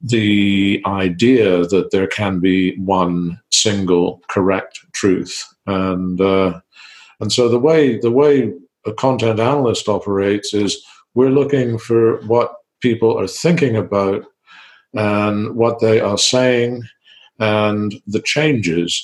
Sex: male